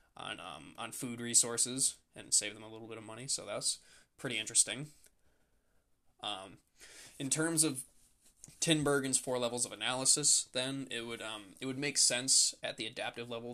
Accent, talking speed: American, 170 wpm